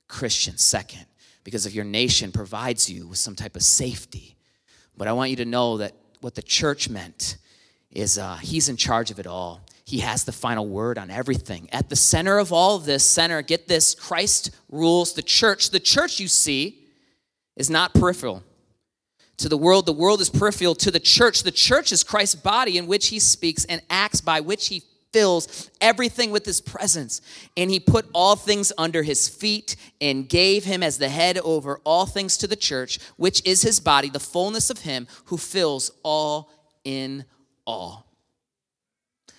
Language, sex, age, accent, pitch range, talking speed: English, male, 30-49, American, 115-175 Hz, 185 wpm